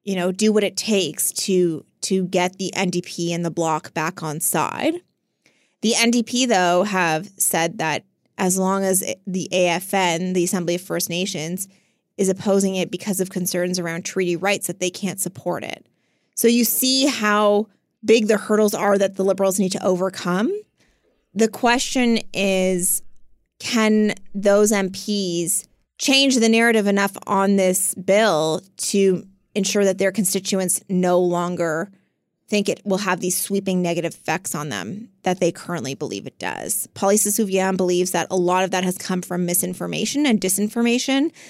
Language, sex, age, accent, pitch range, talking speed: English, female, 20-39, American, 180-205 Hz, 160 wpm